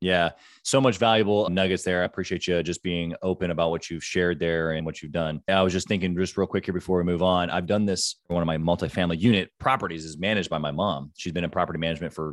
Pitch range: 90-115 Hz